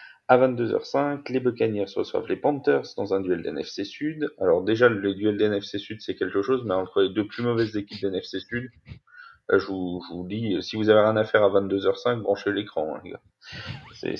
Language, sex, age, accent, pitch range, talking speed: French, male, 30-49, French, 100-135 Hz, 205 wpm